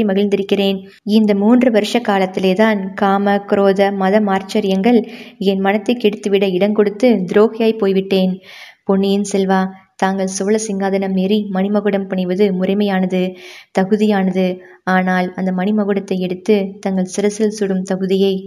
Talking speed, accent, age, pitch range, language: 110 wpm, native, 20-39, 195-230 Hz, Tamil